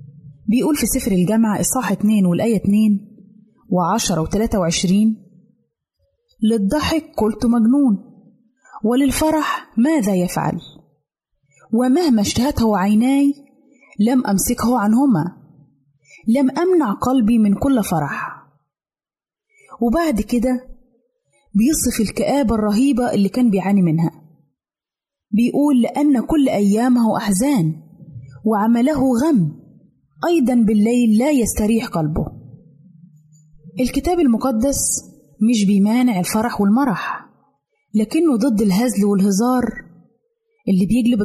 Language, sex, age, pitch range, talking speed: Arabic, female, 20-39, 195-255 Hz, 95 wpm